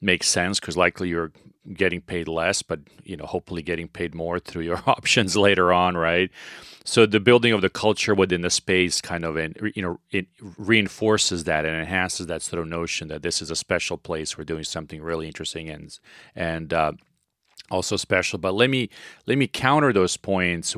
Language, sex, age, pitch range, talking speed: English, male, 40-59, 85-100 Hz, 195 wpm